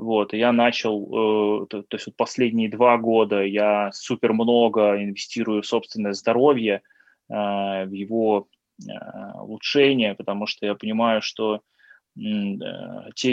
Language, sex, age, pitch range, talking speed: Russian, male, 20-39, 105-125 Hz, 115 wpm